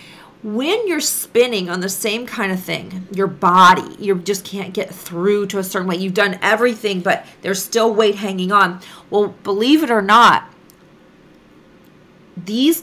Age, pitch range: 40-59, 190-255 Hz